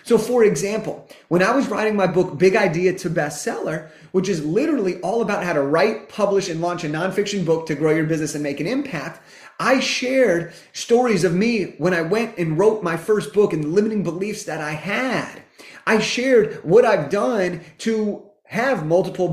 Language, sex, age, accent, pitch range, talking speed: English, male, 30-49, American, 180-230 Hz, 195 wpm